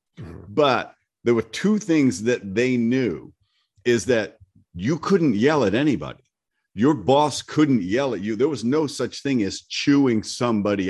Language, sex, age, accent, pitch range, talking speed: English, male, 50-69, American, 100-130 Hz, 160 wpm